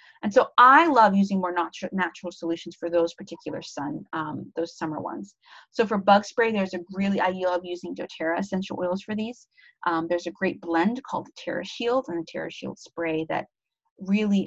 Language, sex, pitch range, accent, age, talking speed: English, female, 170-220 Hz, American, 30-49, 200 wpm